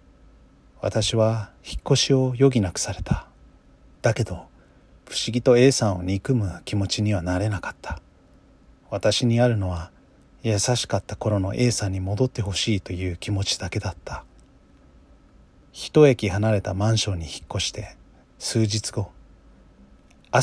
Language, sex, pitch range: Japanese, male, 90-115 Hz